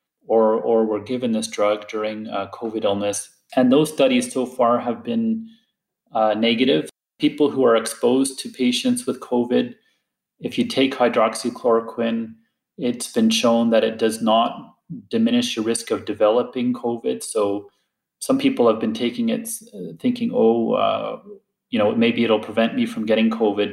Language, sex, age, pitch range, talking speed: English, male, 30-49, 110-140 Hz, 160 wpm